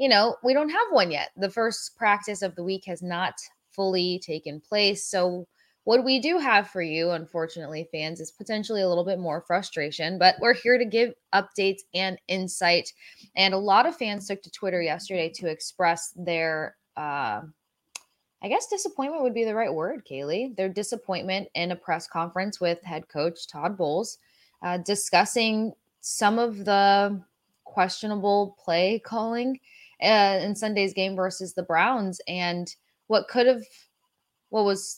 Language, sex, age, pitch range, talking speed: English, female, 20-39, 175-210 Hz, 165 wpm